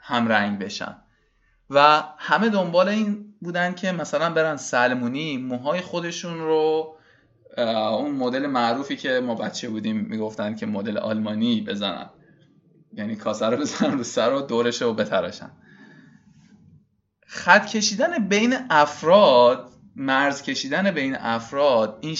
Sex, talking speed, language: male, 125 wpm, Persian